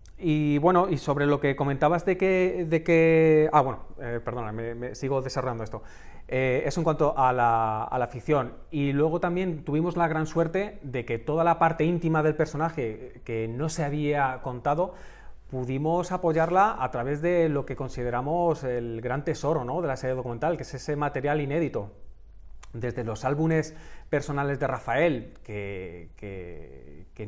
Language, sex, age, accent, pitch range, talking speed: Spanish, male, 30-49, Spanish, 125-160 Hz, 175 wpm